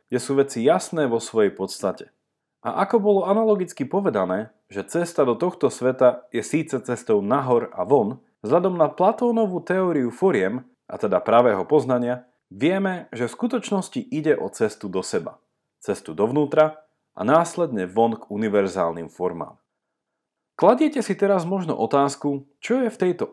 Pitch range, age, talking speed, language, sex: 115-190 Hz, 30-49, 150 wpm, Slovak, male